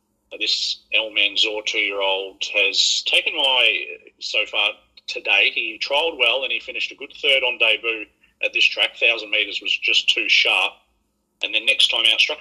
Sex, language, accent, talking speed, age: male, English, Australian, 180 wpm, 40-59